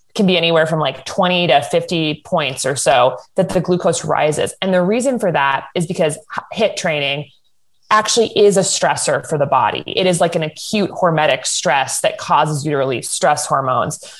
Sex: female